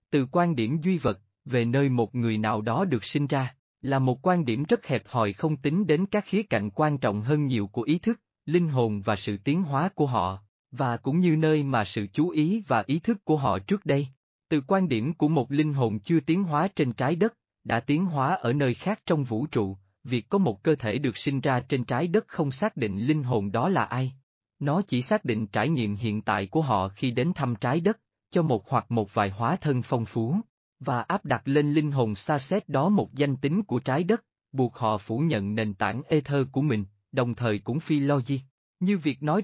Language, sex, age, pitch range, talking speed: Vietnamese, male, 20-39, 120-155 Hz, 235 wpm